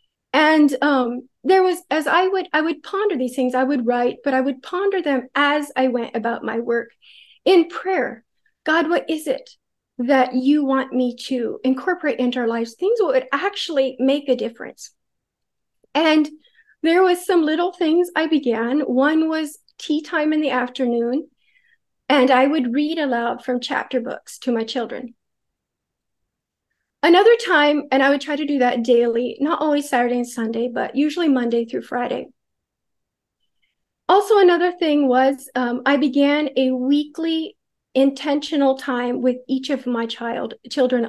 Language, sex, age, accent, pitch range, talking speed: English, female, 40-59, American, 245-305 Hz, 160 wpm